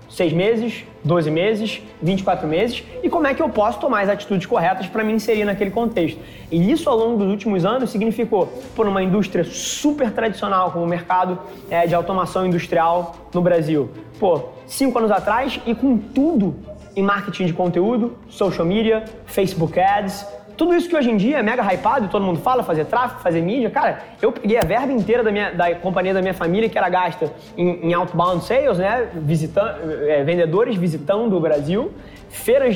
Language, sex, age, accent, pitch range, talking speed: Portuguese, male, 20-39, Brazilian, 175-225 Hz, 190 wpm